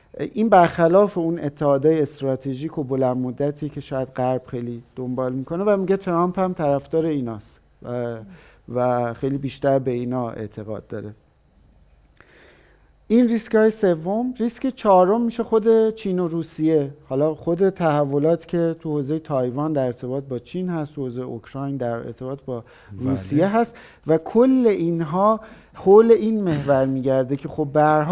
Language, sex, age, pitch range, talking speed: Persian, male, 50-69, 135-180 Hz, 145 wpm